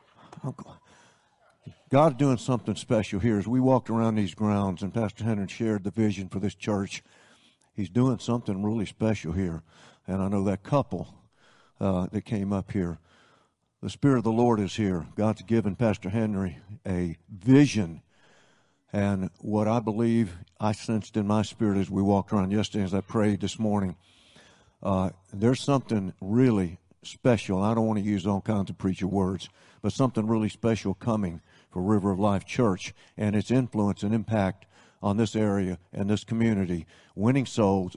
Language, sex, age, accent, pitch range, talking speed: English, male, 60-79, American, 100-120 Hz, 170 wpm